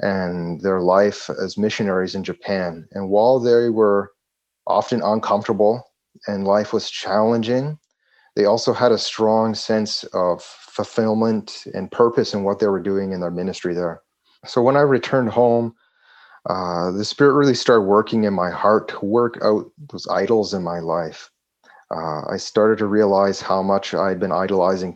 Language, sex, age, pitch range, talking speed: English, male, 30-49, 90-110 Hz, 165 wpm